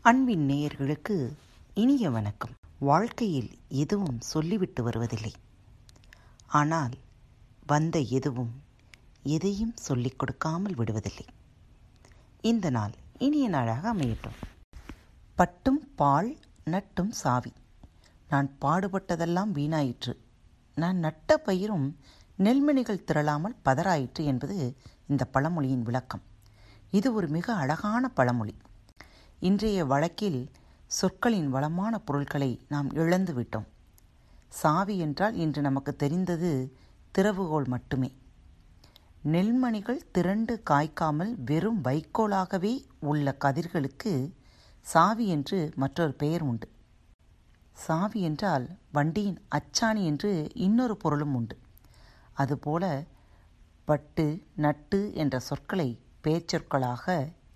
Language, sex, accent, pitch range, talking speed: Tamil, female, native, 120-185 Hz, 85 wpm